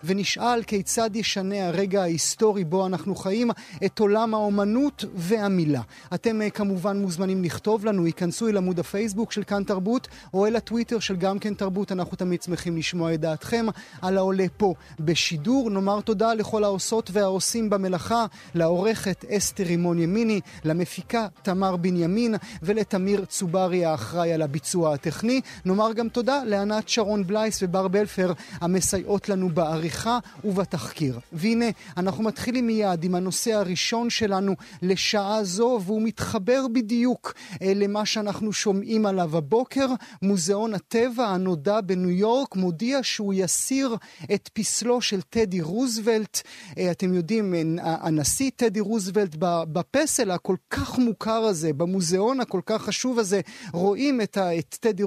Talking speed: 130 wpm